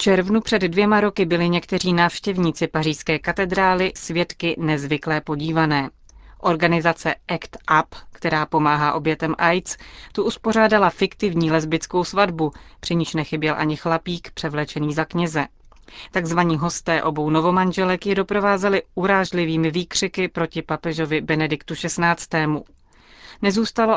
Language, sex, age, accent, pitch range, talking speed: Czech, female, 30-49, native, 160-185 Hz, 115 wpm